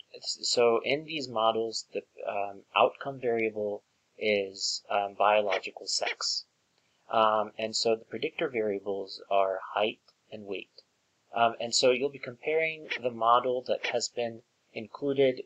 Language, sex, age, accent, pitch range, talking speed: English, male, 30-49, American, 110-130 Hz, 130 wpm